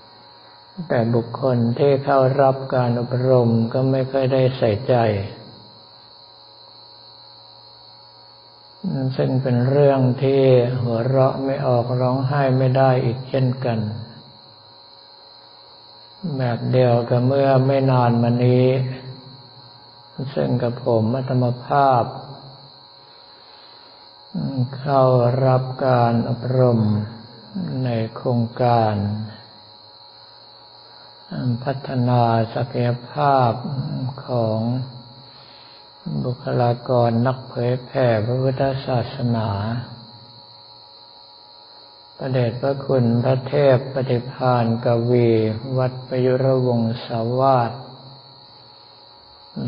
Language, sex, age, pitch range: Thai, male, 60-79, 105-130 Hz